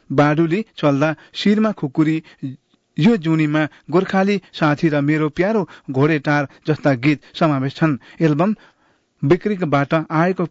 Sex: male